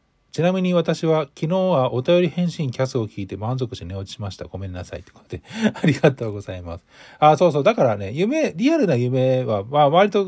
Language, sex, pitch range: Japanese, male, 100-165 Hz